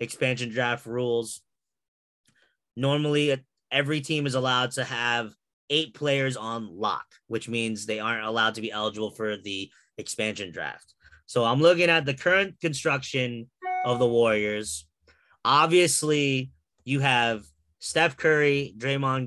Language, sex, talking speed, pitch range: English, male, 130 wpm, 115-140 Hz